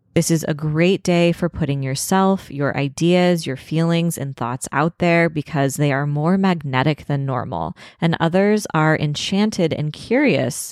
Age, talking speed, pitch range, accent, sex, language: 20-39, 160 wpm, 145-180 Hz, American, female, English